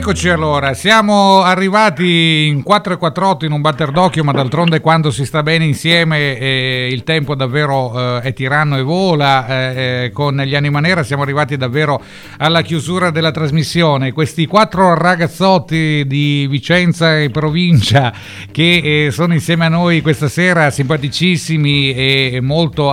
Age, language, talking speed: 50-69, Italian, 150 wpm